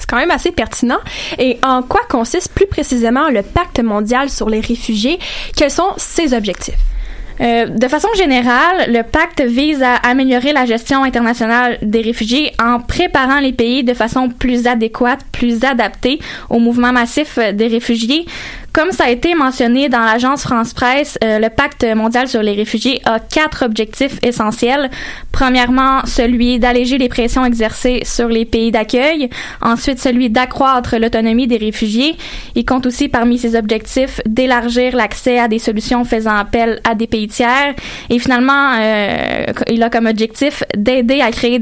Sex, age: female, 10-29